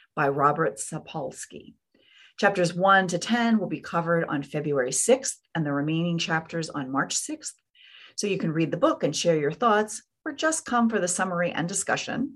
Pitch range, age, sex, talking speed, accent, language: 155-205 Hz, 40-59, female, 185 wpm, American, English